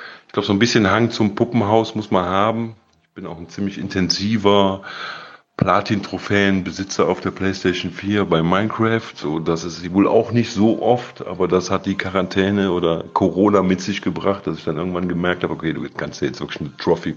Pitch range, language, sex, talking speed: 90-110 Hz, German, male, 205 wpm